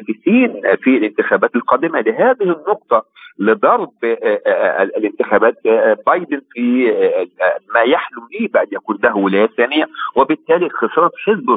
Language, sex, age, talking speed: Arabic, male, 50-69, 105 wpm